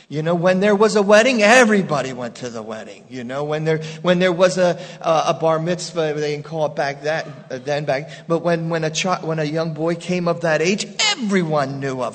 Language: English